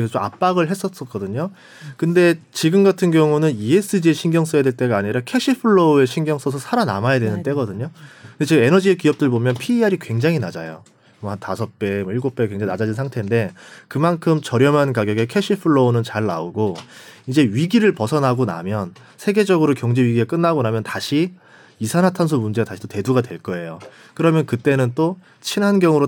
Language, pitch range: Korean, 115-170 Hz